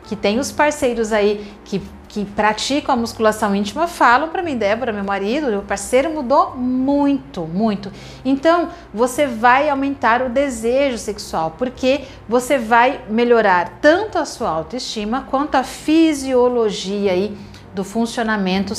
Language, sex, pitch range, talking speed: Portuguese, female, 210-275 Hz, 135 wpm